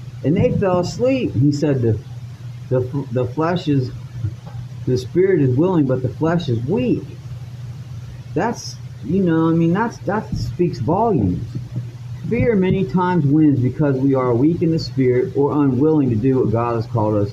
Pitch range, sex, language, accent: 120-155 Hz, male, English, American